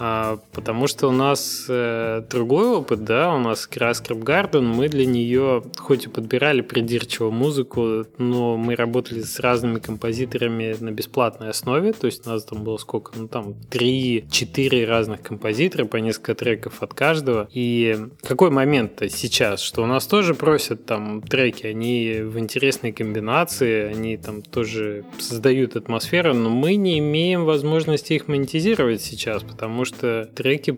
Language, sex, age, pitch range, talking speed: Russian, male, 20-39, 110-130 Hz, 155 wpm